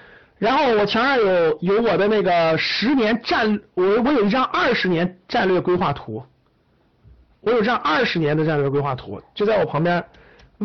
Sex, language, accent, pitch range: male, Chinese, native, 150-225 Hz